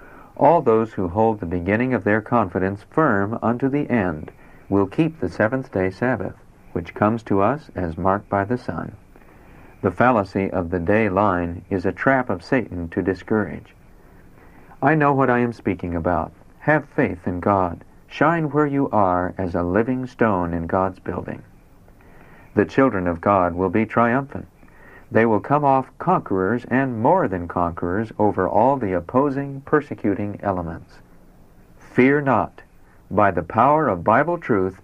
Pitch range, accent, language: 95-130 Hz, American, English